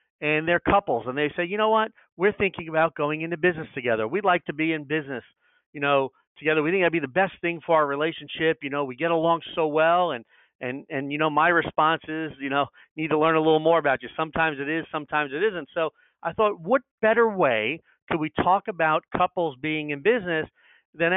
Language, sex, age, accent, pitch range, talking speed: English, male, 50-69, American, 145-175 Hz, 230 wpm